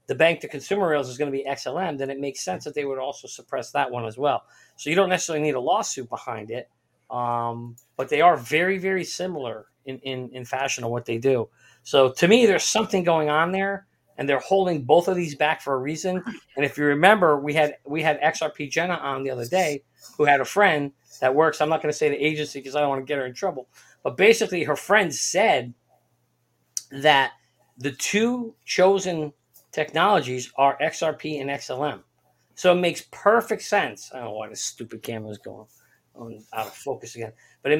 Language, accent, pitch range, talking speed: English, American, 135-175 Hz, 215 wpm